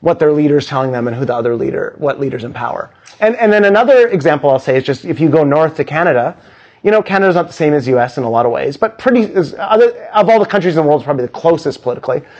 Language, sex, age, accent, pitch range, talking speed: English, male, 30-49, American, 130-180 Hz, 275 wpm